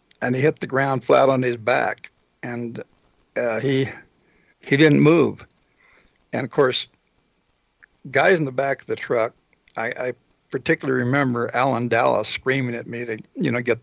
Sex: male